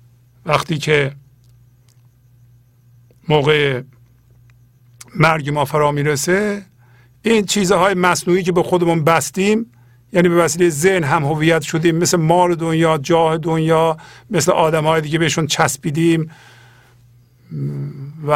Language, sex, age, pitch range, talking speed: Persian, male, 50-69, 120-165 Hz, 105 wpm